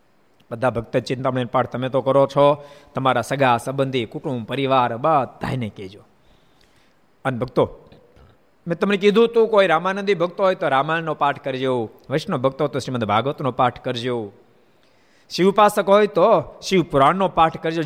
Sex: male